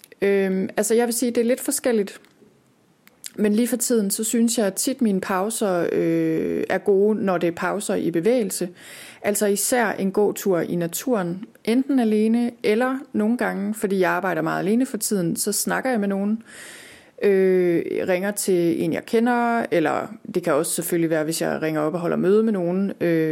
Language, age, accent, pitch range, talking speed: Danish, 30-49, native, 180-220 Hz, 185 wpm